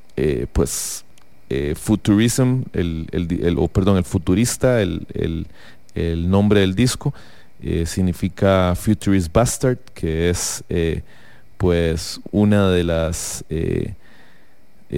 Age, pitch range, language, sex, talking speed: 30-49, 85-100 Hz, English, male, 120 wpm